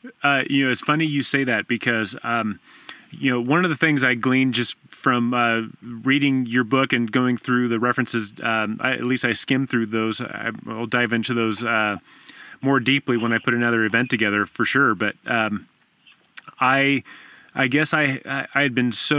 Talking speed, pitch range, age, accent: 195 wpm, 115-135 Hz, 30-49, American